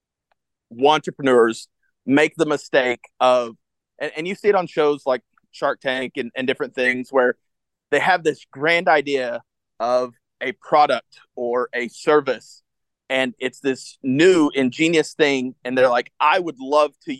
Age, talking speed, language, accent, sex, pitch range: 30-49, 155 wpm, English, American, male, 130-165 Hz